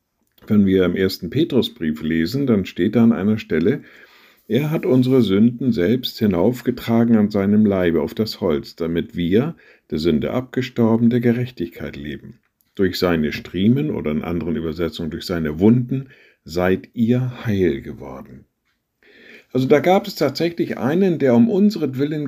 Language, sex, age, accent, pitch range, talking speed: German, male, 50-69, German, 90-125 Hz, 150 wpm